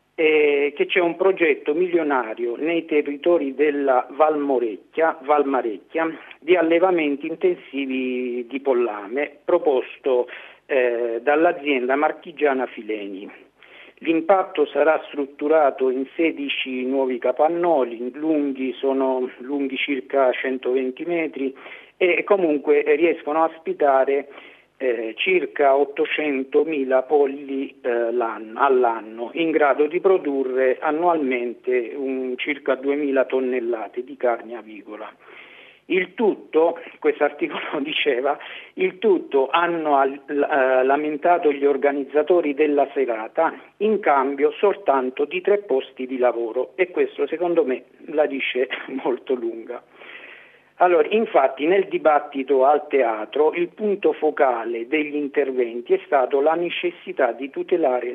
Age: 50-69